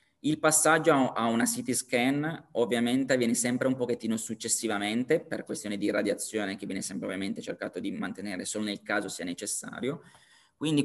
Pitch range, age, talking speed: 115-135 Hz, 20-39, 160 wpm